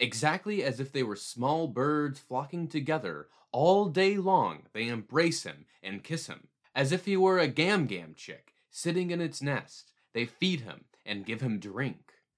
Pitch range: 135-185 Hz